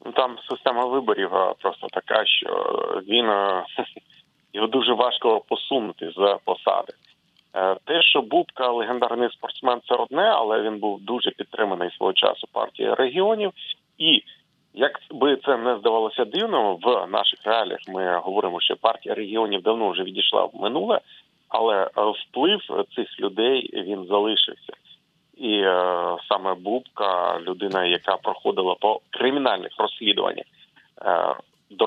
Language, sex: Ukrainian, male